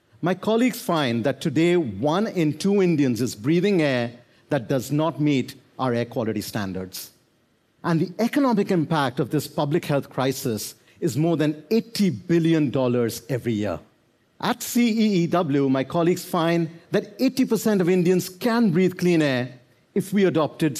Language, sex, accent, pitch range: Korean, male, Indian, 135-185 Hz